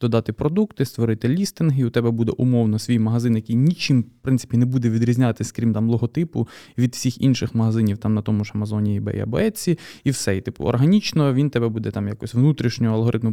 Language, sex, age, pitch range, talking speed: Ukrainian, male, 20-39, 115-140 Hz, 200 wpm